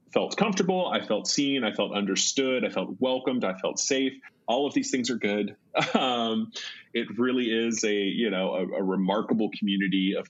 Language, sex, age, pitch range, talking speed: English, male, 30-49, 90-105 Hz, 185 wpm